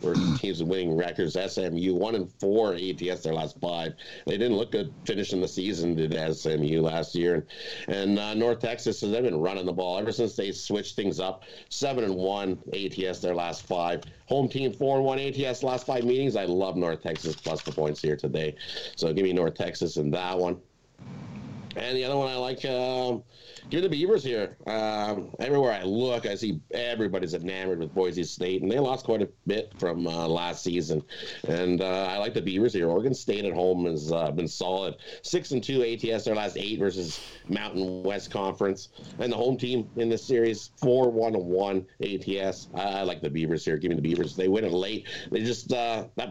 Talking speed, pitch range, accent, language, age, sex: 205 wpm, 90-120 Hz, American, English, 50-69, male